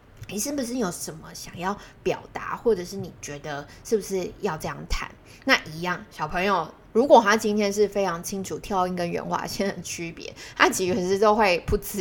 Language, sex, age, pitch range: Chinese, female, 20-39, 180-230 Hz